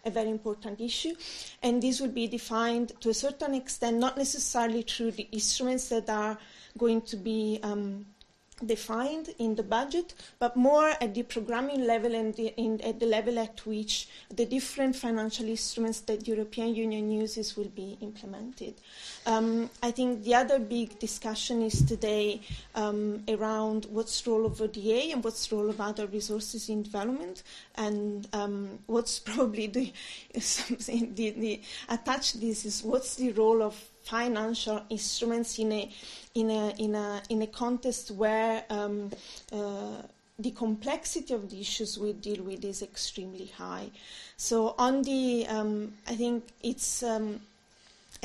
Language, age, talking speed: Swedish, 30-49, 155 wpm